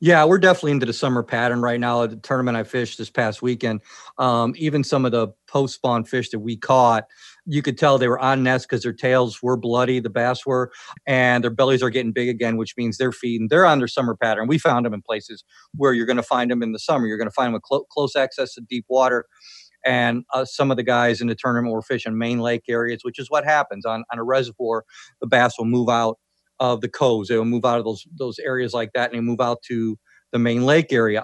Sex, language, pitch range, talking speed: male, English, 120-135 Hz, 250 wpm